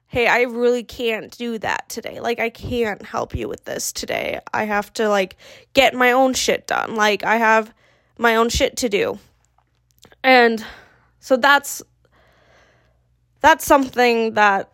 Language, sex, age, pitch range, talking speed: English, female, 10-29, 210-245 Hz, 155 wpm